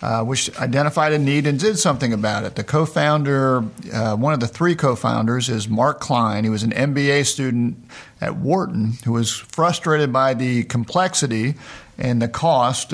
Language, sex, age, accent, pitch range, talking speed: English, male, 50-69, American, 120-150 Hz, 165 wpm